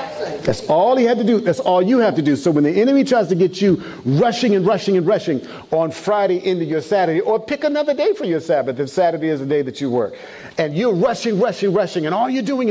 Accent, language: American, English